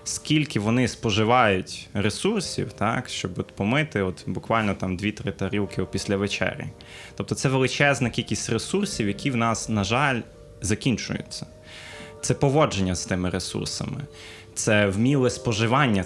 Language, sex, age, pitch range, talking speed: Ukrainian, male, 20-39, 100-120 Hz, 125 wpm